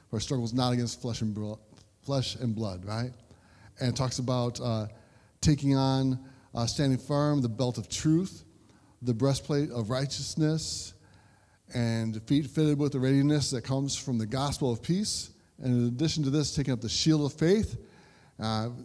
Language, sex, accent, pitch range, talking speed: English, male, American, 120-160 Hz, 160 wpm